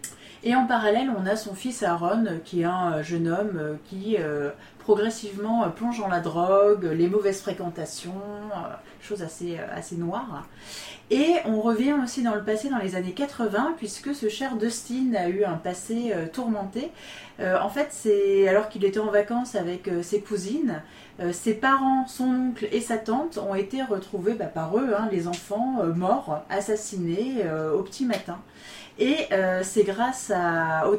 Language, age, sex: French, 30-49, female